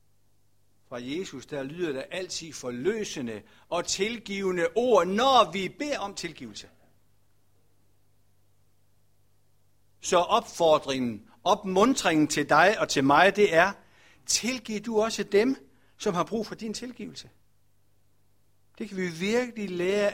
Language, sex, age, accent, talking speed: Danish, male, 60-79, native, 120 wpm